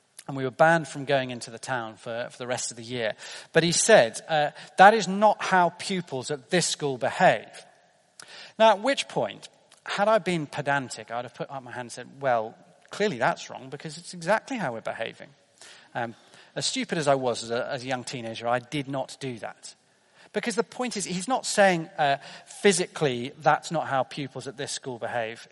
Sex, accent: male, British